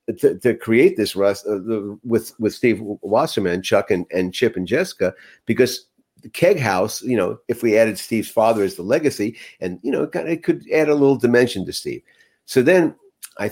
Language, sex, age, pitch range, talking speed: English, male, 50-69, 100-135 Hz, 200 wpm